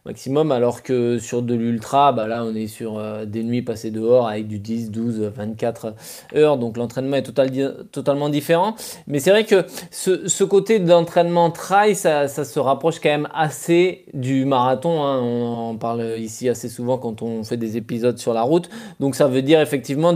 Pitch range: 120-150 Hz